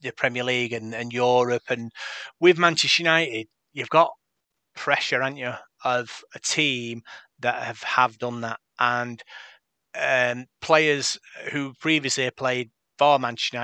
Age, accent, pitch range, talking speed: 30-49, British, 120-140 Hz, 145 wpm